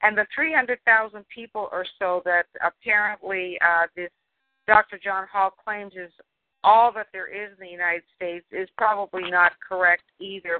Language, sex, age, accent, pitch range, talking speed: English, female, 50-69, American, 185-235 Hz, 160 wpm